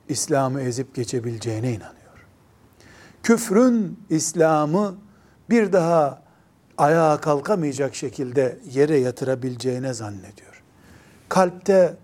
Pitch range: 125-175 Hz